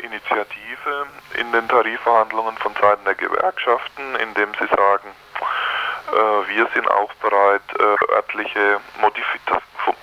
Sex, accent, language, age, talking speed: male, German, German, 20-39, 115 wpm